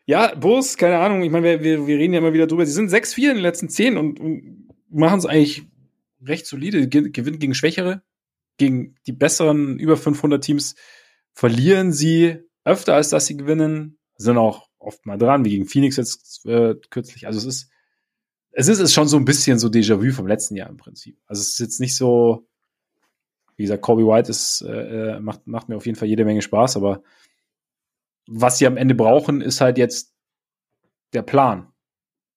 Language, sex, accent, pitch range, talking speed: German, male, German, 110-155 Hz, 190 wpm